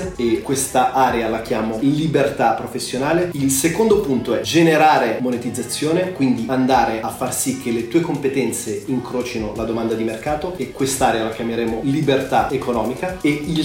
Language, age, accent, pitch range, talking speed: Italian, 30-49, native, 120-150 Hz, 155 wpm